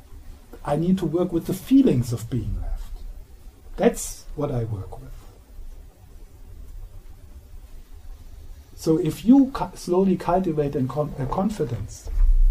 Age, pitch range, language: 60-79, 85-135 Hz, English